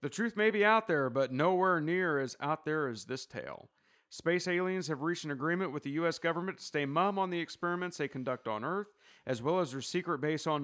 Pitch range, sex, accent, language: 130-170 Hz, male, American, English